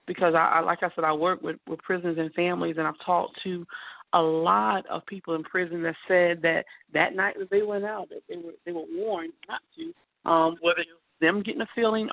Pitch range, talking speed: 175-230 Hz, 235 wpm